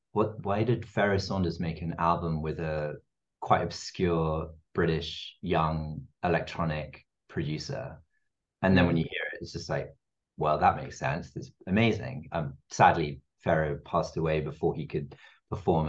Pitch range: 80-95 Hz